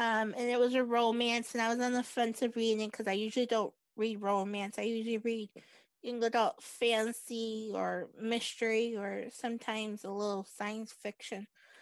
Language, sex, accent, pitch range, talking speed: English, female, American, 220-255 Hz, 175 wpm